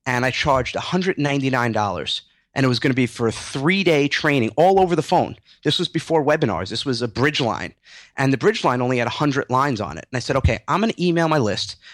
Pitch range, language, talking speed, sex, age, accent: 115-155 Hz, English, 235 wpm, male, 30-49, American